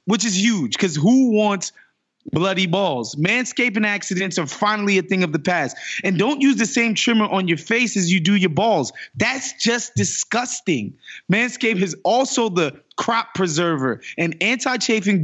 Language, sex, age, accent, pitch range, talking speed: English, male, 20-39, American, 170-215 Hz, 165 wpm